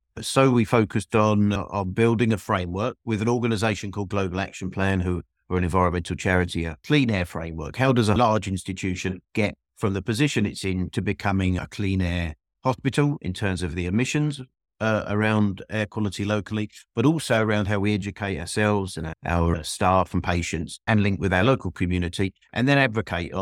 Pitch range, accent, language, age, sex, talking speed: 85-105 Hz, British, English, 50-69, male, 185 wpm